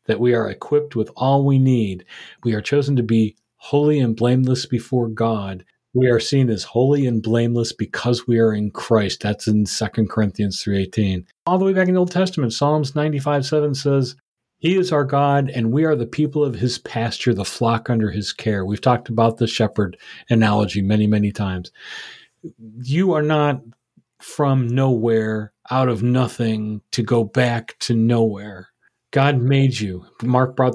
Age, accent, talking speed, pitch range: 40-59, American, 175 wpm, 110-130 Hz